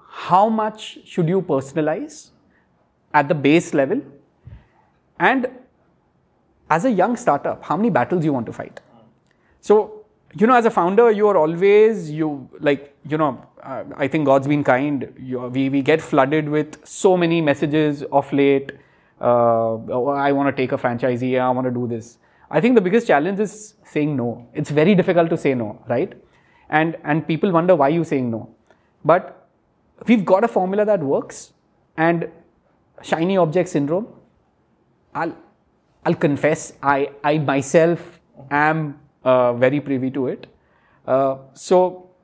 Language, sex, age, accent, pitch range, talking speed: English, male, 30-49, Indian, 140-205 Hz, 160 wpm